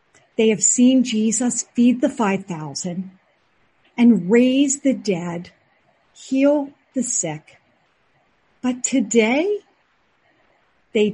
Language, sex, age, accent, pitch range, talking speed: English, female, 50-69, American, 195-255 Hz, 90 wpm